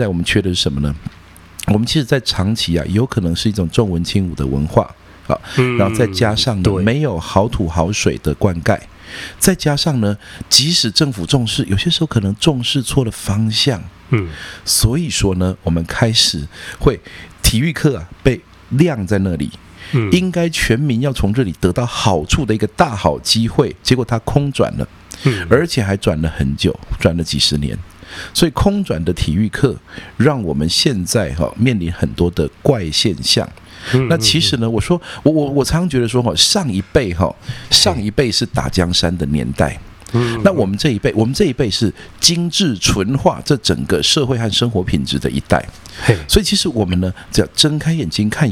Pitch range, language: 90-130 Hz, Chinese